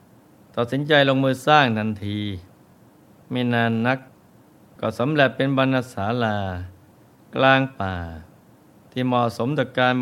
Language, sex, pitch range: Thai, male, 105-130 Hz